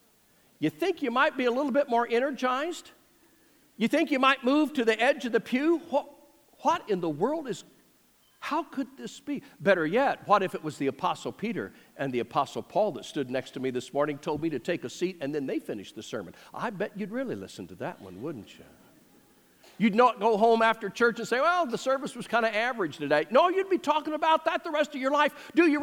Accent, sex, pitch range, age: American, male, 210-295 Hz, 50-69